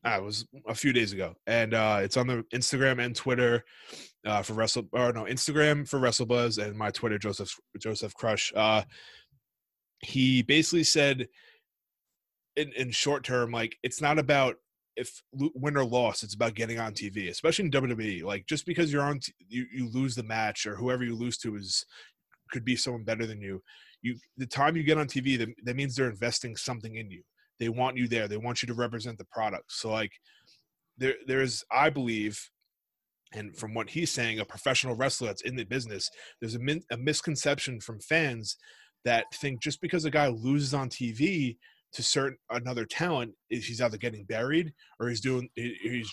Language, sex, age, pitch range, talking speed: English, male, 20-39, 115-140 Hz, 190 wpm